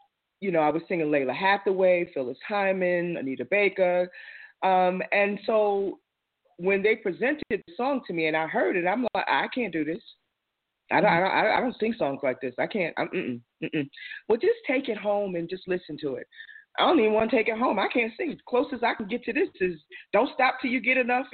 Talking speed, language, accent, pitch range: 225 wpm, English, American, 150-245 Hz